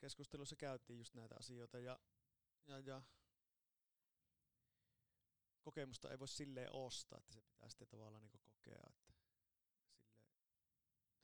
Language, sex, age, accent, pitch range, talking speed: Finnish, male, 30-49, native, 110-125 Hz, 115 wpm